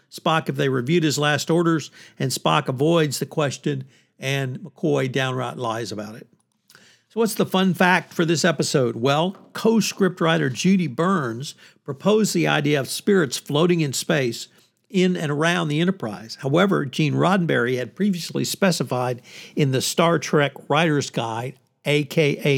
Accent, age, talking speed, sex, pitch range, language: American, 60-79, 150 wpm, male, 140-175 Hz, English